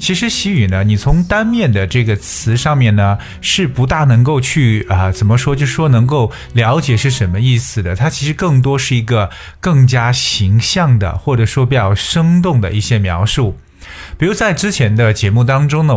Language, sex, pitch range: Chinese, male, 100-135 Hz